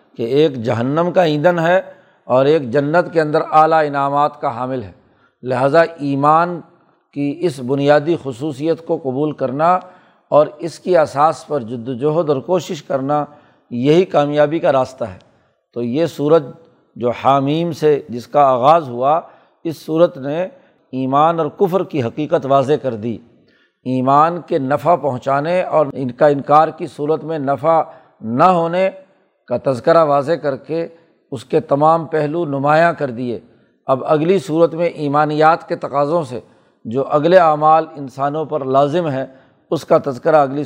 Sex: male